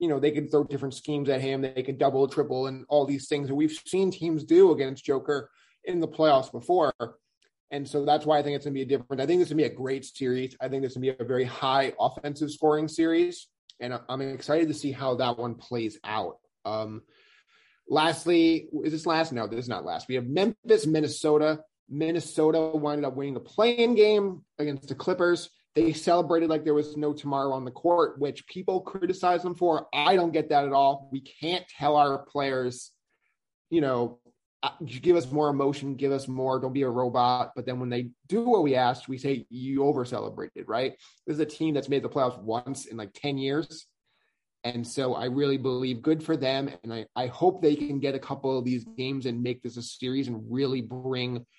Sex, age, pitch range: male, 20-39, 130-155 Hz